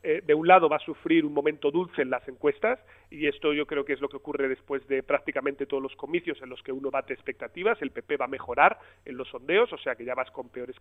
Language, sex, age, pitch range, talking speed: Spanish, male, 30-49, 145-200 Hz, 270 wpm